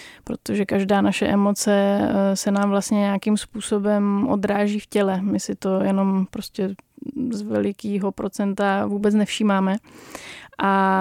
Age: 20-39